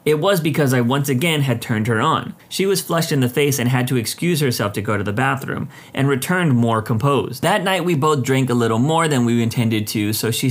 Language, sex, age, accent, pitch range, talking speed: English, male, 30-49, American, 115-150 Hz, 250 wpm